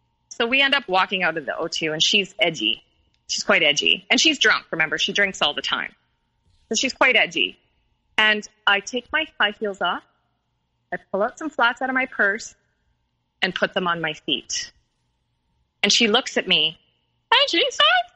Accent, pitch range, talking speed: American, 200-265 Hz, 190 wpm